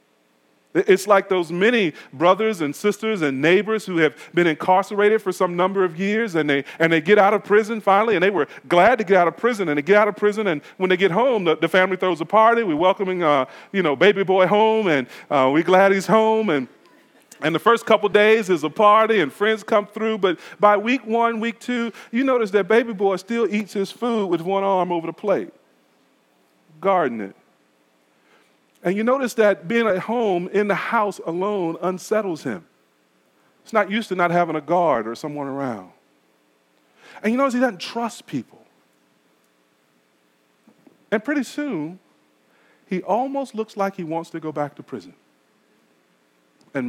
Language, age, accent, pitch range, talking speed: English, 40-59, American, 140-215 Hz, 190 wpm